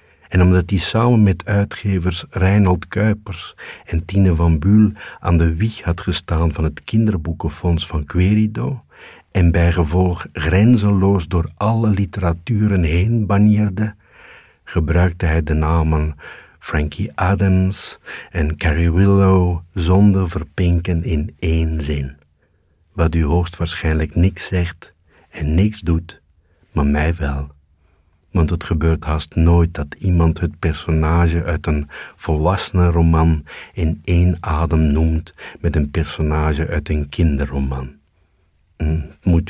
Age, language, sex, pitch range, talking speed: 50-69, Dutch, male, 80-95 Hz, 120 wpm